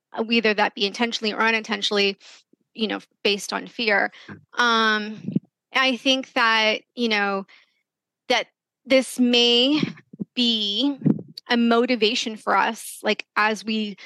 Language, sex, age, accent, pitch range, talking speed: English, female, 20-39, American, 205-235 Hz, 120 wpm